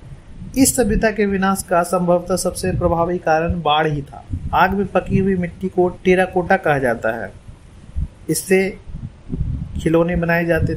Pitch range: 135-175 Hz